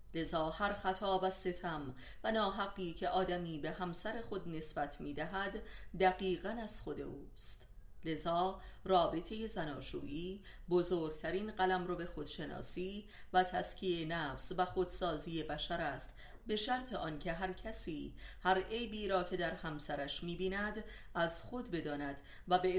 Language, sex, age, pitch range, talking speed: Persian, female, 30-49, 160-190 Hz, 130 wpm